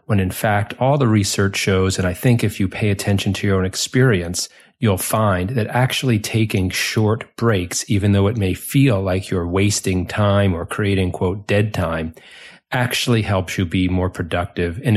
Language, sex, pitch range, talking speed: English, male, 95-115 Hz, 185 wpm